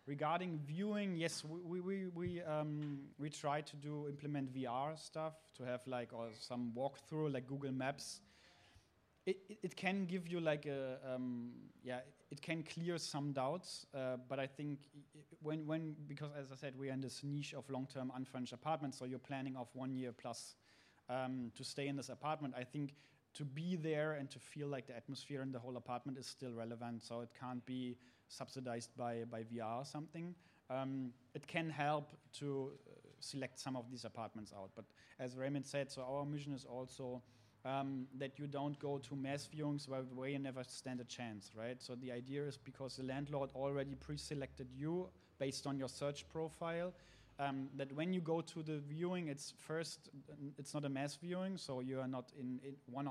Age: 30-49